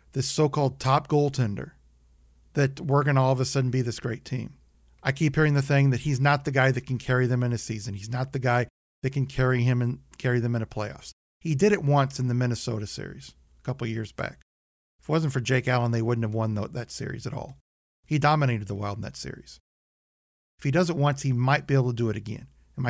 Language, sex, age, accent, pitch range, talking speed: English, male, 40-59, American, 100-145 Hz, 245 wpm